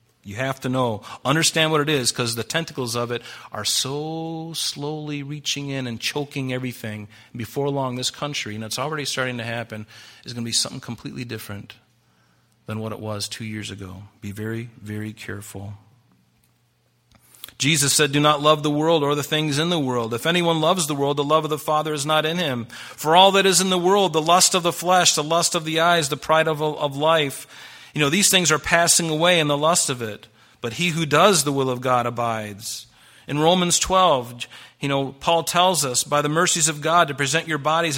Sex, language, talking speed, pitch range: male, English, 215 wpm, 120-170 Hz